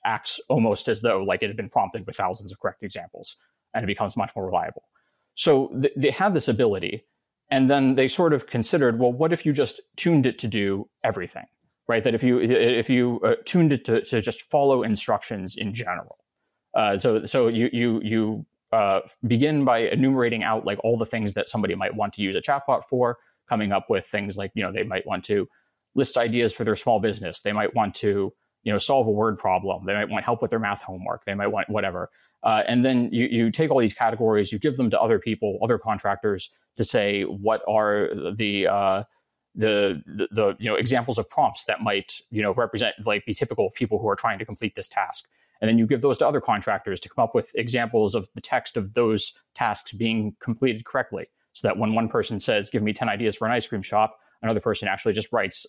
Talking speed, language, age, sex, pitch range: 230 wpm, English, 20-39, male, 105-125 Hz